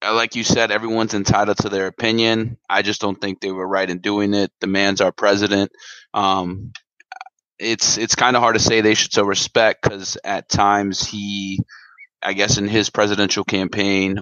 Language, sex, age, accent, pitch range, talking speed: English, male, 20-39, American, 100-110 Hz, 185 wpm